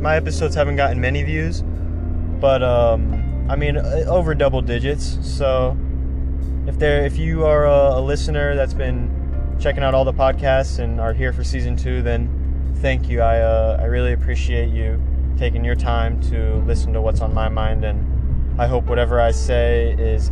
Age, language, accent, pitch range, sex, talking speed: 20-39, English, American, 65-85 Hz, male, 180 wpm